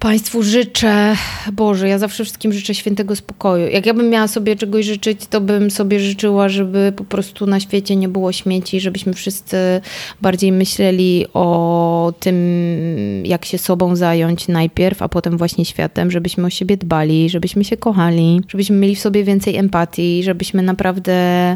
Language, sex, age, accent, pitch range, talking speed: Polish, female, 20-39, native, 170-200 Hz, 160 wpm